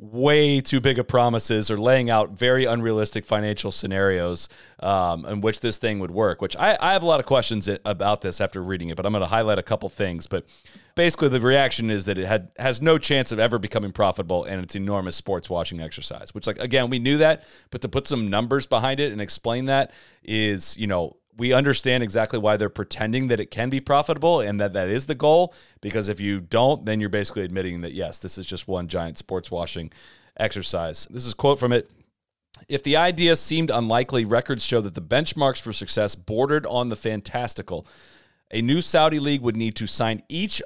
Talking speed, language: 215 wpm, English